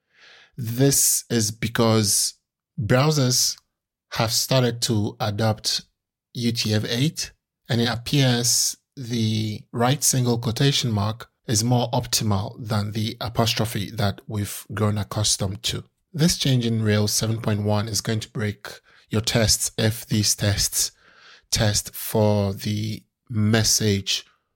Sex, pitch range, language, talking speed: male, 105-120 Hz, English, 110 wpm